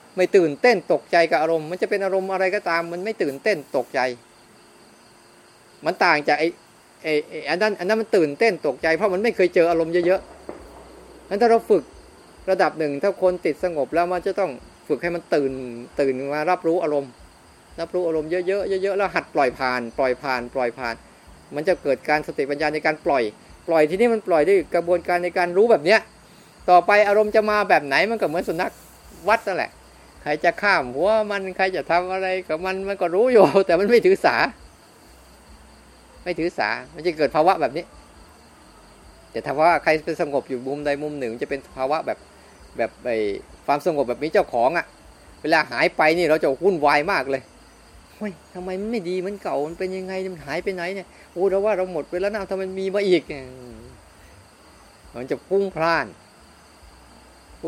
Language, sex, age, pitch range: Thai, male, 30-49, 150-195 Hz